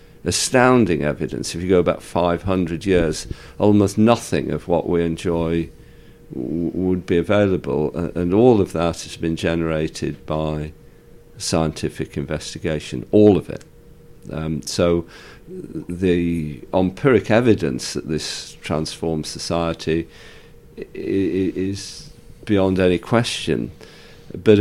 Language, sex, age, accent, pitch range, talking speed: English, male, 50-69, British, 80-95 Hz, 110 wpm